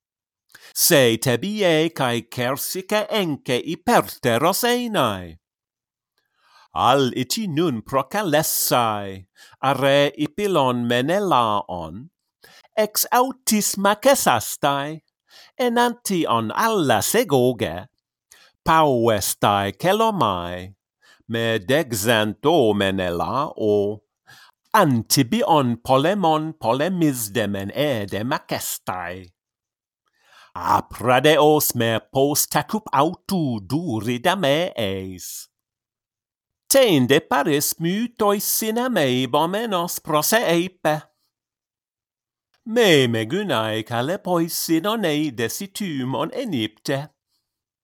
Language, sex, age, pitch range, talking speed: English, male, 50-69, 115-170 Hz, 65 wpm